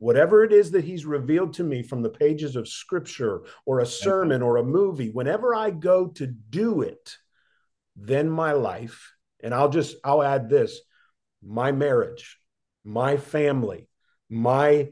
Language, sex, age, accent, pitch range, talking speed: English, male, 50-69, American, 120-155 Hz, 155 wpm